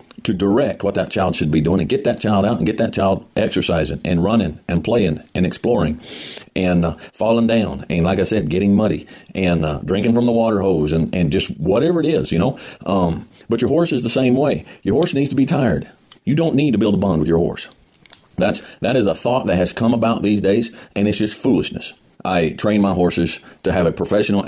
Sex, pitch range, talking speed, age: male, 90-120 Hz, 235 wpm, 50-69